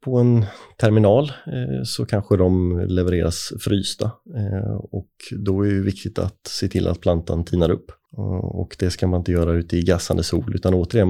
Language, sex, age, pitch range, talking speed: Swedish, male, 30-49, 90-105 Hz, 175 wpm